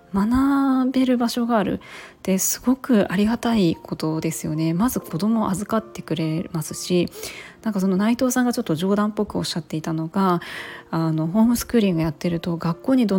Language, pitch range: Japanese, 165-215 Hz